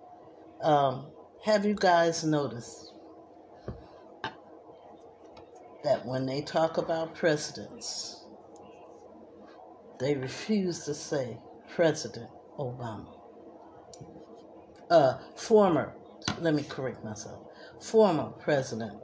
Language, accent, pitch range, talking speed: English, American, 145-170 Hz, 80 wpm